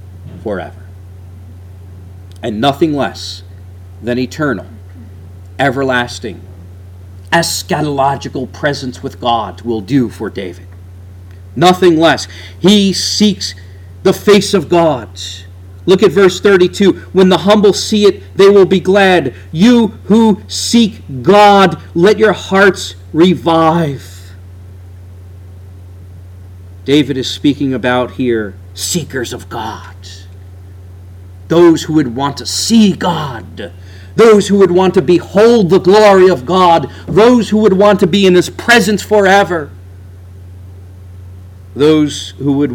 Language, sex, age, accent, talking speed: English, male, 40-59, American, 115 wpm